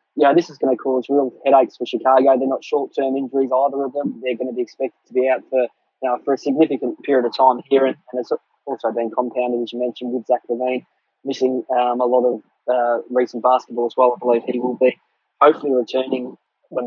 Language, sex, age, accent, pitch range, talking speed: English, male, 20-39, Australian, 120-130 Hz, 230 wpm